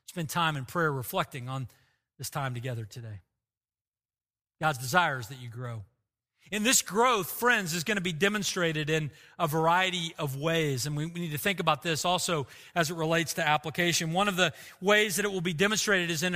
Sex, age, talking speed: male, 40-59, 200 wpm